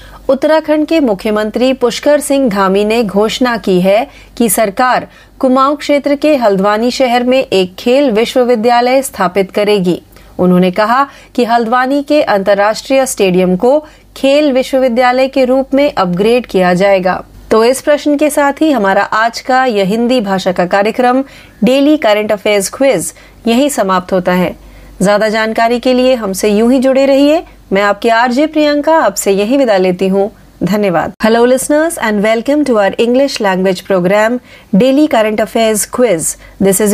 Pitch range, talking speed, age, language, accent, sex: 205-270 Hz, 135 wpm, 30-49, Marathi, native, female